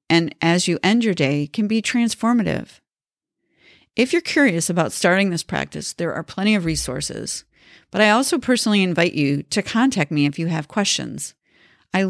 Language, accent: English, American